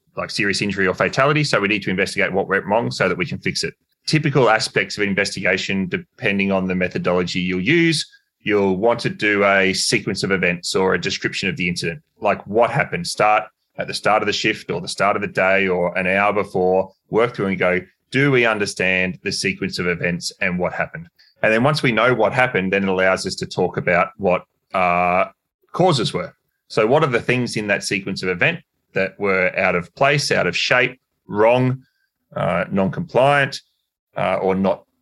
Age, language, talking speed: 20-39, English, 205 wpm